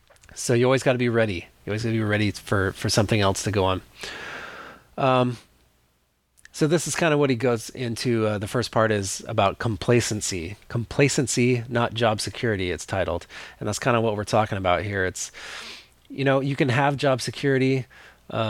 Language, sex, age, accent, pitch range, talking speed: English, male, 30-49, American, 105-125 Hz, 200 wpm